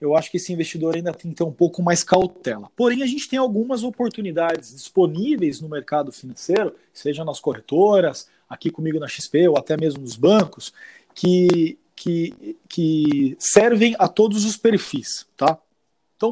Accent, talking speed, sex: Brazilian, 160 wpm, male